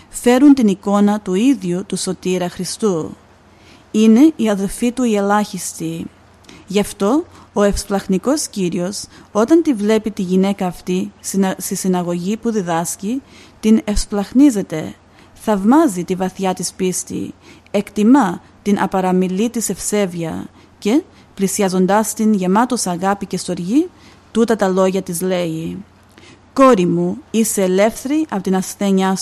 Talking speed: 125 wpm